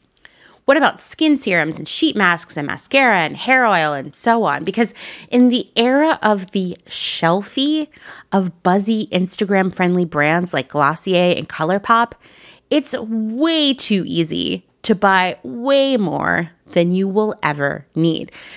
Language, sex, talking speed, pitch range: English, female, 140 wpm, 160-220 Hz